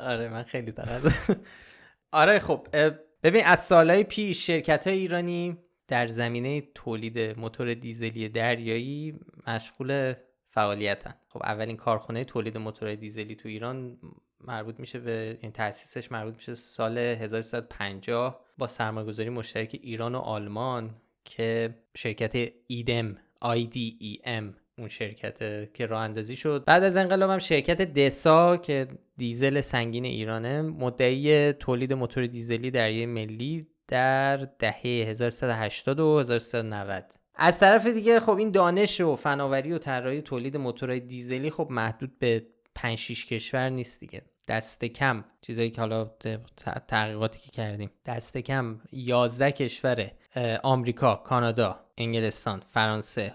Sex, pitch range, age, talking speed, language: male, 115-140 Hz, 20-39, 125 wpm, Persian